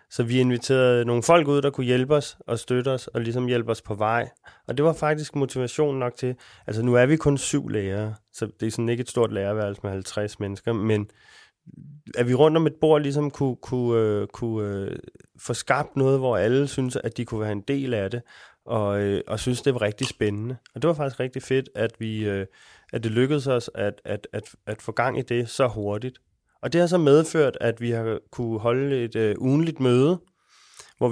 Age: 20-39